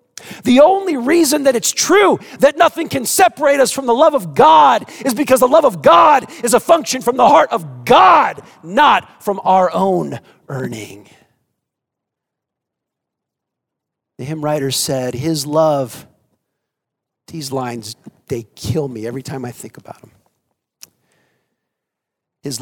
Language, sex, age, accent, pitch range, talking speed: English, male, 40-59, American, 115-160 Hz, 140 wpm